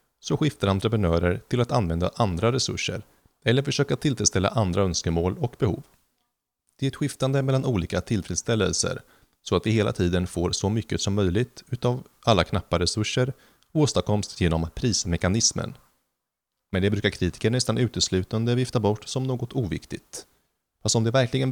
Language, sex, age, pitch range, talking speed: Swedish, male, 30-49, 90-120 Hz, 150 wpm